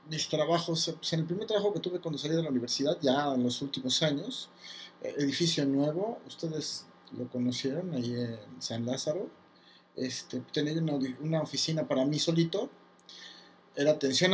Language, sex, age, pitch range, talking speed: Spanish, male, 50-69, 140-185 Hz, 155 wpm